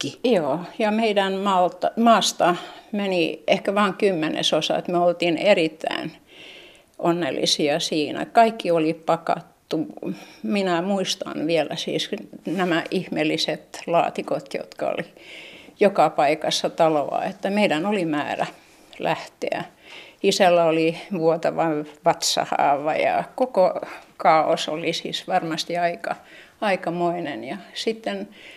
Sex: female